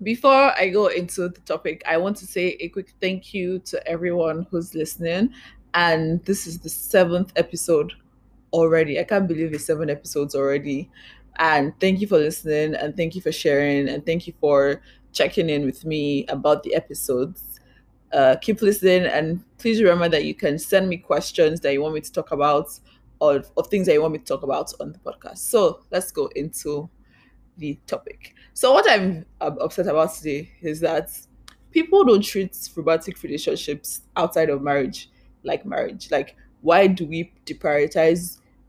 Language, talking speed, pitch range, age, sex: English, 175 wpm, 150-185 Hz, 20-39, female